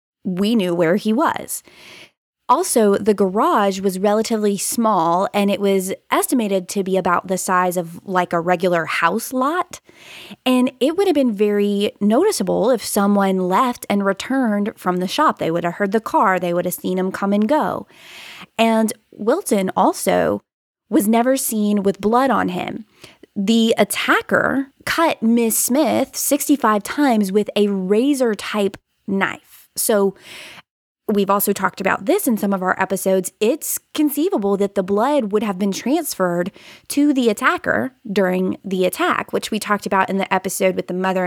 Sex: female